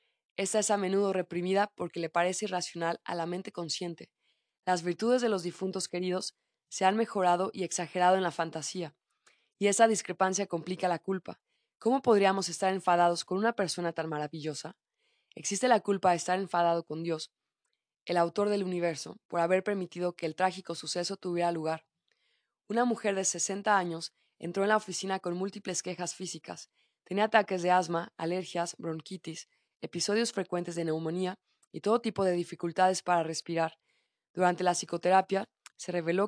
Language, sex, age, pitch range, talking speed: Spanish, female, 20-39, 170-195 Hz, 160 wpm